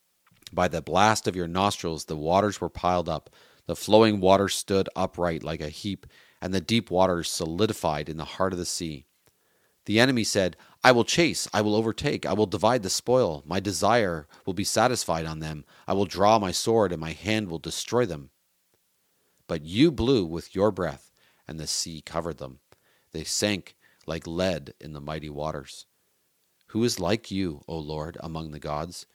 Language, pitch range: English, 80-105 Hz